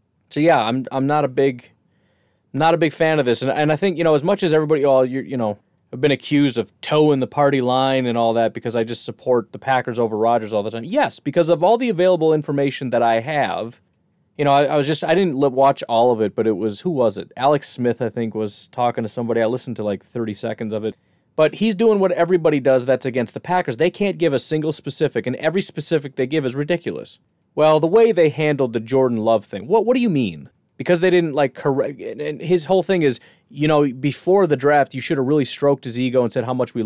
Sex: male